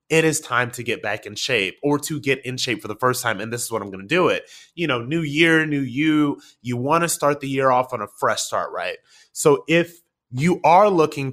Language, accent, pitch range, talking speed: English, American, 120-160 Hz, 260 wpm